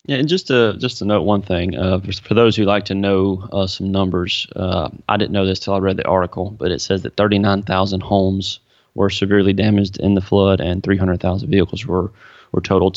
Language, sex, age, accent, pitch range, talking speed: English, male, 30-49, American, 95-105 Hz, 240 wpm